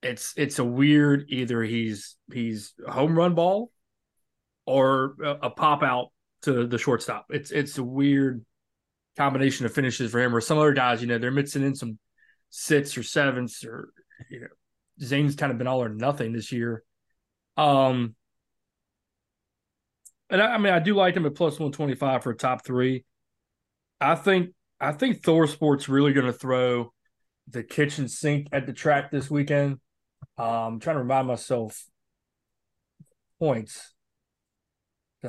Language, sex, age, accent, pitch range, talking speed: English, male, 20-39, American, 120-150 Hz, 160 wpm